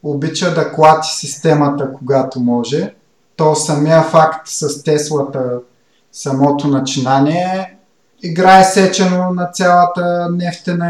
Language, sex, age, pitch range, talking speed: Bulgarian, male, 30-49, 130-160 Hz, 100 wpm